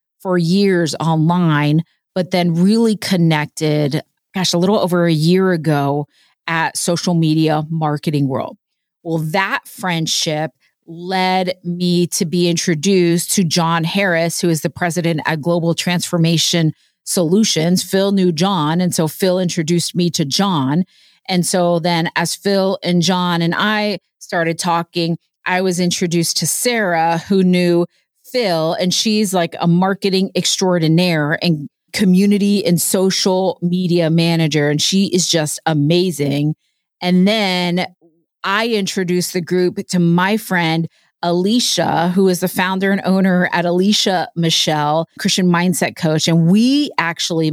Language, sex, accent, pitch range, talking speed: English, female, American, 165-190 Hz, 140 wpm